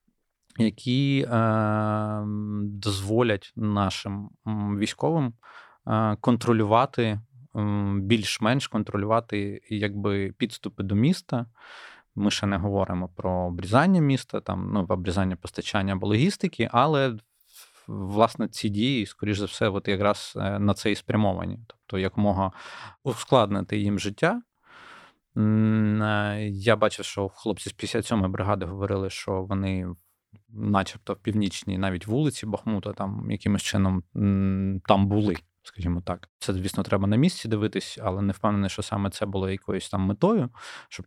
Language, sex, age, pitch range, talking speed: Ukrainian, male, 20-39, 95-110 Hz, 120 wpm